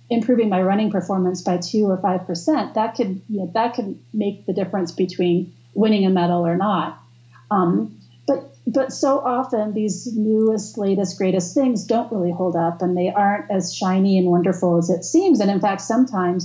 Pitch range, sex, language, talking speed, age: 180-210 Hz, female, English, 180 wpm, 40-59